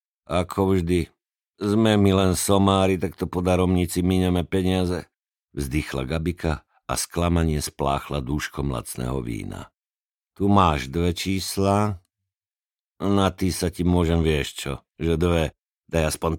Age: 50-69